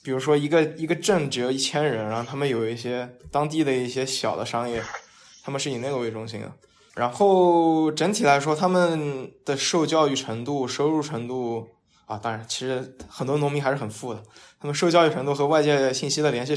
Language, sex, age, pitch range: Chinese, male, 20-39, 115-145 Hz